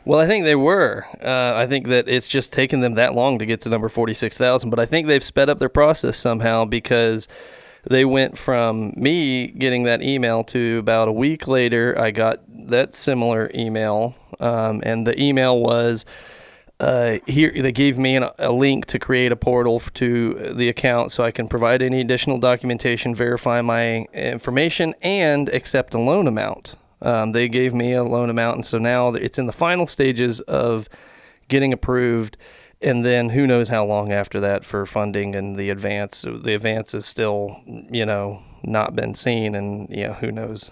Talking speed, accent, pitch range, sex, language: 185 wpm, American, 115-130 Hz, male, English